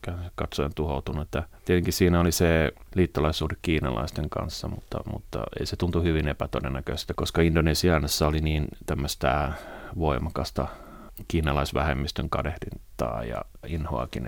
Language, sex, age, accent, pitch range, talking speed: Finnish, male, 30-49, native, 80-90 Hz, 105 wpm